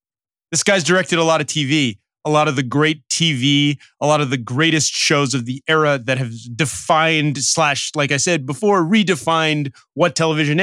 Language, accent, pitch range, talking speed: English, American, 130-170 Hz, 185 wpm